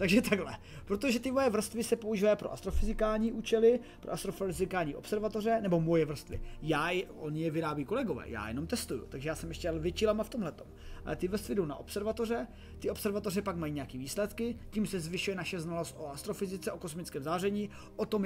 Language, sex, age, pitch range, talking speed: Czech, male, 30-49, 160-215 Hz, 185 wpm